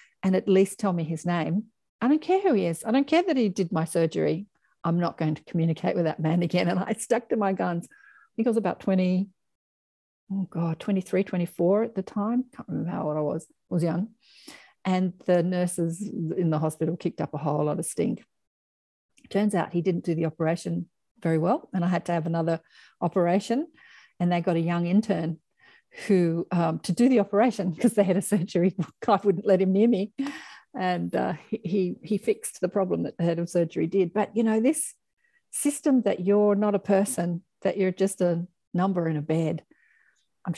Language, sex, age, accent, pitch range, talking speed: English, female, 50-69, Australian, 165-205 Hz, 210 wpm